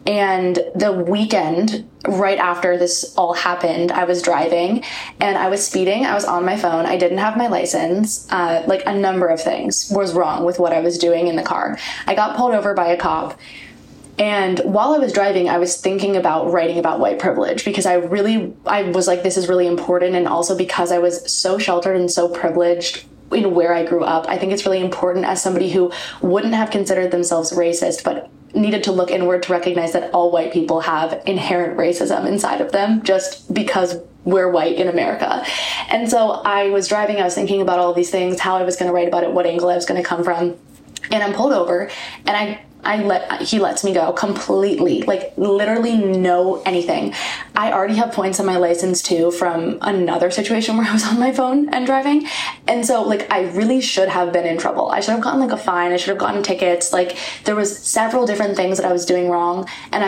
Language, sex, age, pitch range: English, female, 20-39, 175-205 Hz